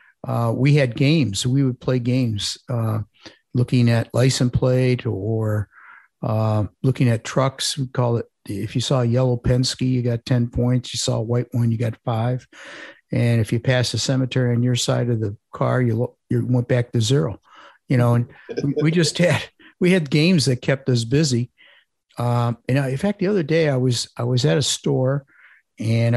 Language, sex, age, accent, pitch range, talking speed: English, male, 50-69, American, 120-135 Hz, 200 wpm